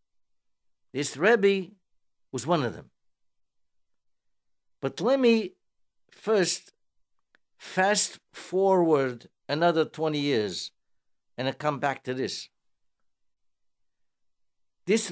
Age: 60-79